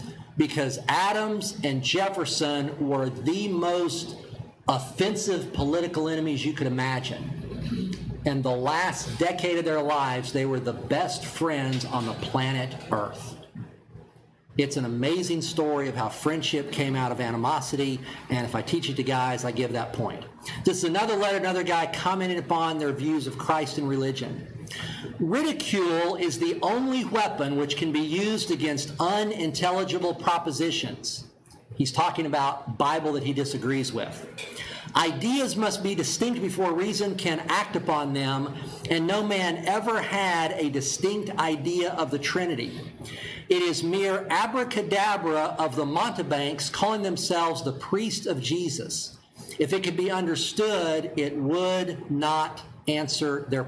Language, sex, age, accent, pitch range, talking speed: English, male, 50-69, American, 140-180 Hz, 145 wpm